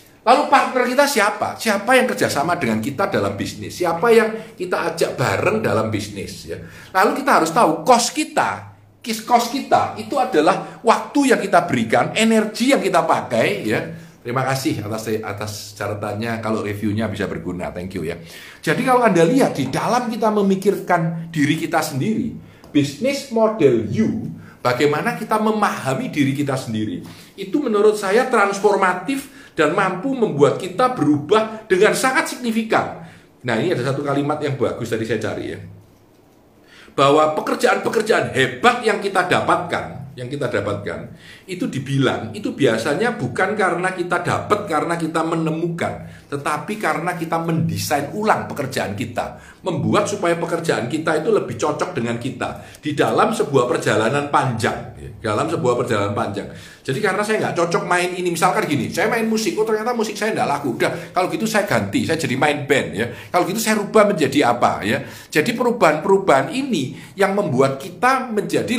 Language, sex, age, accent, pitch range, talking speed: Indonesian, male, 50-69, native, 140-220 Hz, 160 wpm